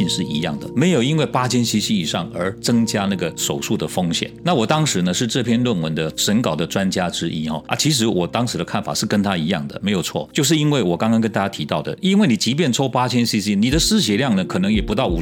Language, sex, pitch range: Chinese, male, 110-150 Hz